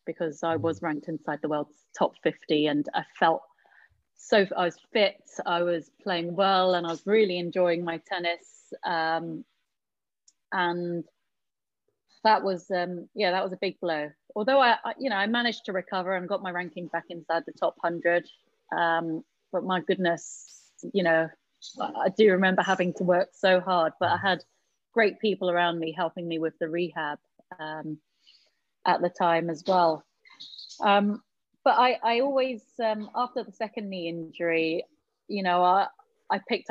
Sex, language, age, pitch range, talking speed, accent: female, English, 30-49, 165-195 Hz, 170 wpm, British